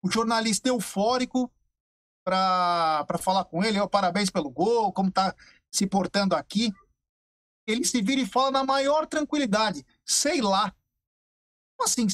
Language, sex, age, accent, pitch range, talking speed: Portuguese, male, 50-69, Brazilian, 195-285 Hz, 135 wpm